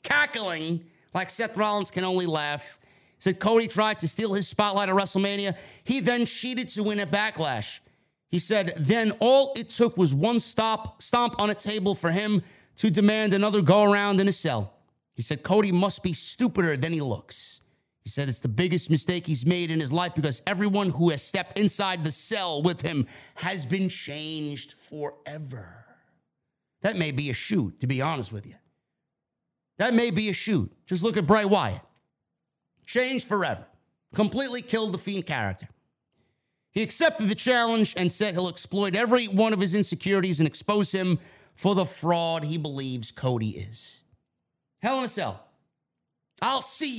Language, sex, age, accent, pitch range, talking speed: English, male, 30-49, American, 155-210 Hz, 175 wpm